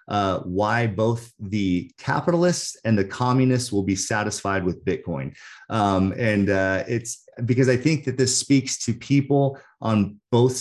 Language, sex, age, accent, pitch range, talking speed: English, male, 30-49, American, 95-125 Hz, 155 wpm